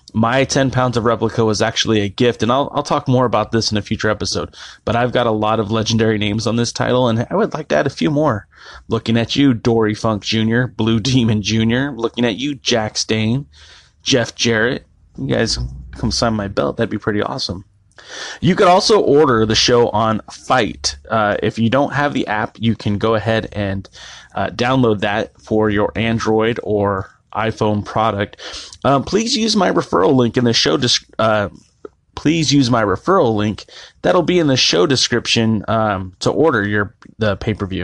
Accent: American